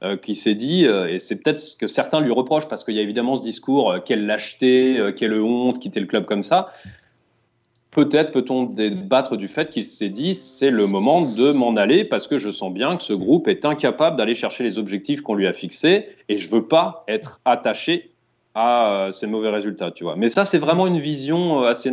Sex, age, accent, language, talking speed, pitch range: male, 30-49, French, French, 230 wpm, 110-145 Hz